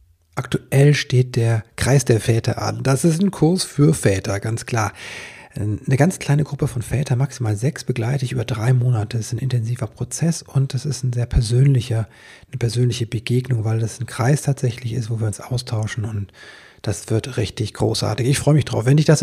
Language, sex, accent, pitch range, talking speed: German, male, German, 115-145 Hz, 200 wpm